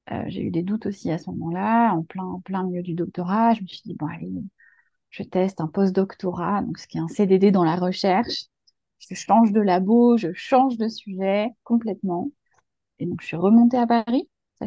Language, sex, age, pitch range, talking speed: French, female, 30-49, 180-225 Hz, 215 wpm